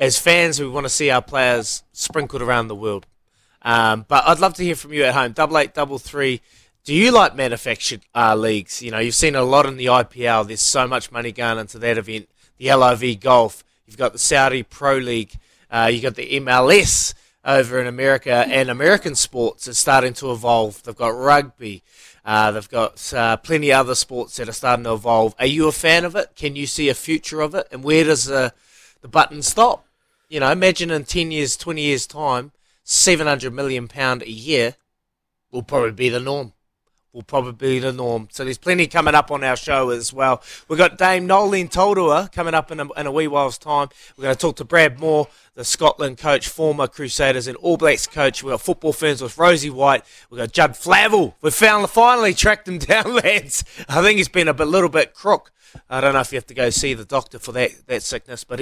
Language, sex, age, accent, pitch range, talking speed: English, male, 20-39, Australian, 120-155 Hz, 220 wpm